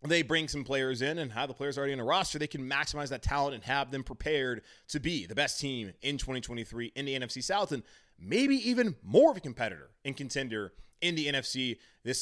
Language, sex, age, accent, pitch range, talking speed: English, male, 20-39, American, 100-135 Hz, 225 wpm